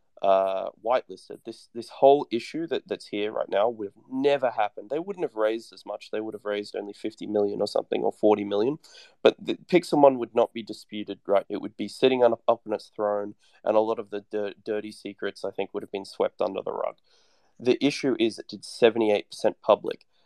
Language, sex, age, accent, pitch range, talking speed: English, male, 20-39, Australian, 105-130 Hz, 215 wpm